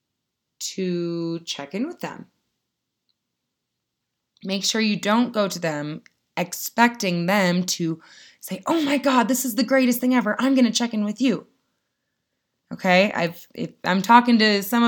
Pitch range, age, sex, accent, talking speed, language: 155-205 Hz, 20-39, female, American, 160 wpm, English